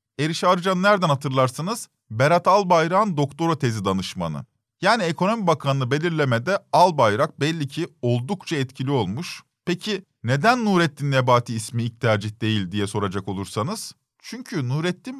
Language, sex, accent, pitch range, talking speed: Turkish, male, native, 120-175 Hz, 120 wpm